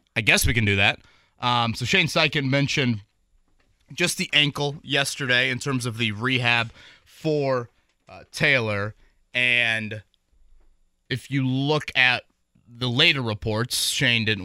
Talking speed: 135 wpm